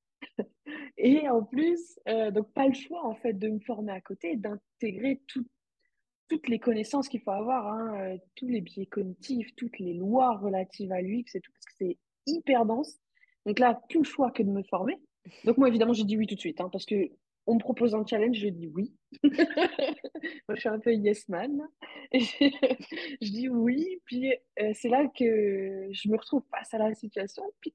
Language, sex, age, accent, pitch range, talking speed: French, female, 20-39, French, 205-265 Hz, 200 wpm